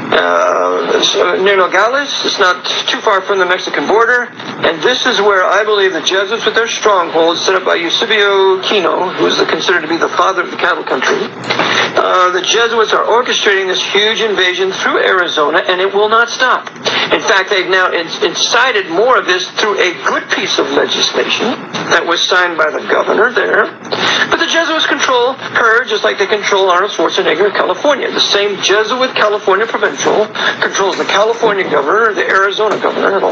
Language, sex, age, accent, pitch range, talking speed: English, male, 50-69, American, 185-235 Hz, 185 wpm